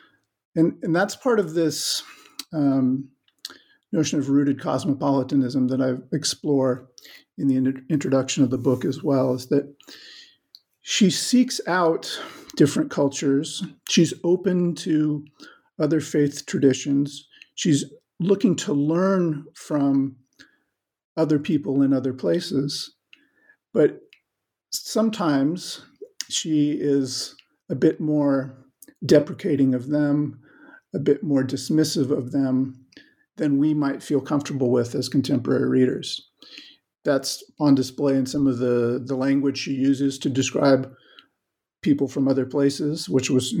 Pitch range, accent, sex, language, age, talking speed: 135-160 Hz, American, male, English, 50-69, 125 wpm